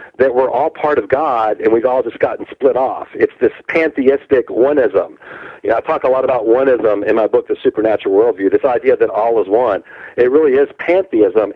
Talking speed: 215 wpm